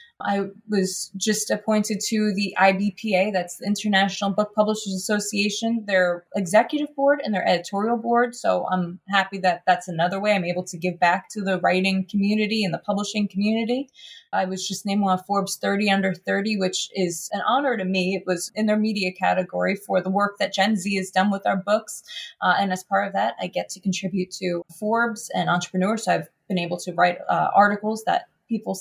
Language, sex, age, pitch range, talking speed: English, female, 20-39, 180-215 Hz, 200 wpm